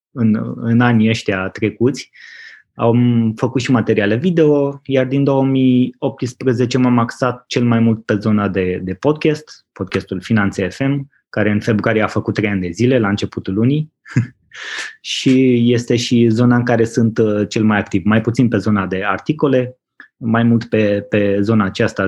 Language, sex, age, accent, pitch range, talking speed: Romanian, male, 20-39, native, 105-130 Hz, 165 wpm